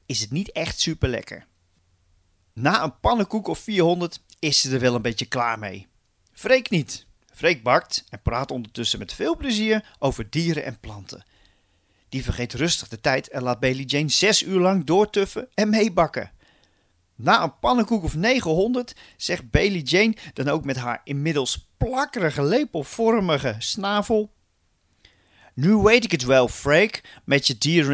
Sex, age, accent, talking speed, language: male, 40-59, Dutch, 155 wpm, Dutch